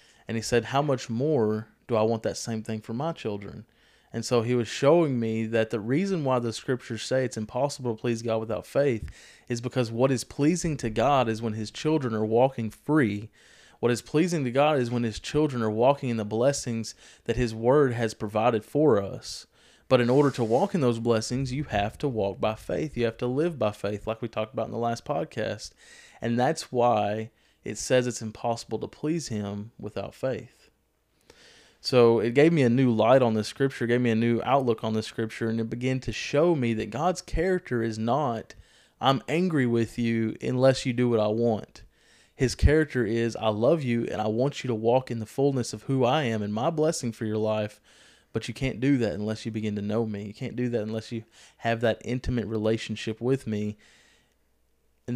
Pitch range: 110-130 Hz